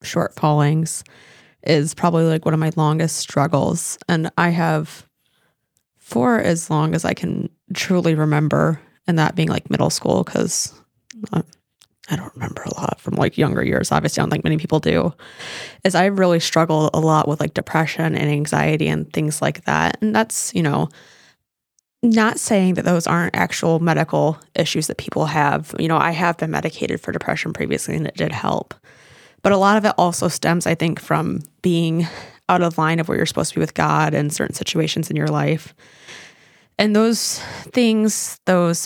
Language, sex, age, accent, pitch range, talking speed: English, female, 20-39, American, 155-180 Hz, 185 wpm